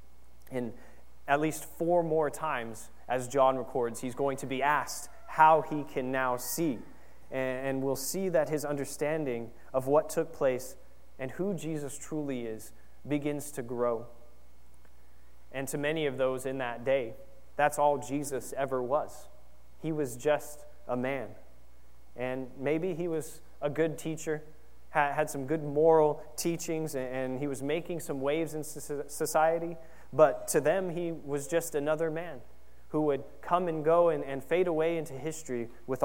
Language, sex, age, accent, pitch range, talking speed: English, male, 20-39, American, 120-155 Hz, 160 wpm